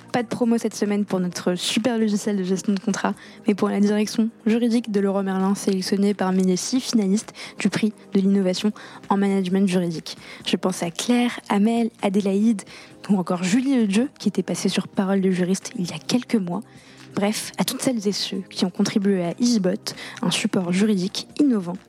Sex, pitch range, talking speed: female, 190-225 Hz, 195 wpm